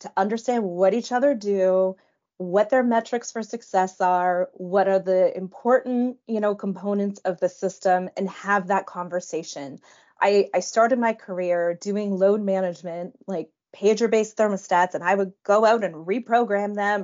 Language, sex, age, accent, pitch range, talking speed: English, female, 20-39, American, 185-230 Hz, 160 wpm